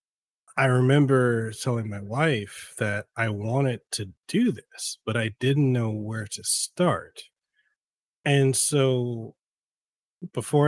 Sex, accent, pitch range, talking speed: male, American, 110-130 Hz, 120 wpm